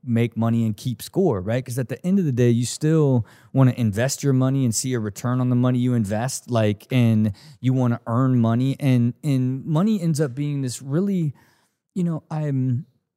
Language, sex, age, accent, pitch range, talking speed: English, male, 20-39, American, 115-140 Hz, 215 wpm